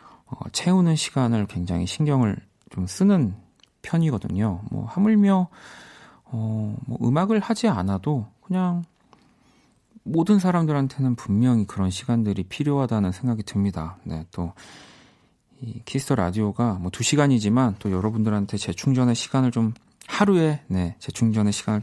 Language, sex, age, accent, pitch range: Korean, male, 40-59, native, 100-140 Hz